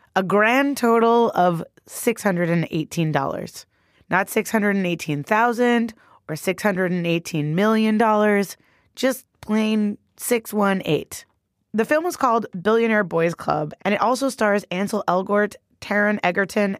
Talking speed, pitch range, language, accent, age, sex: 100 wpm, 165-220 Hz, English, American, 20-39, female